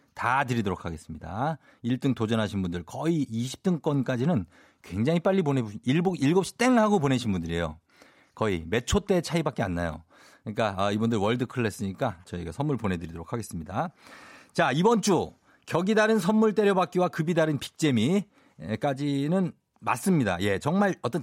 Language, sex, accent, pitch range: Korean, male, native, 115-185 Hz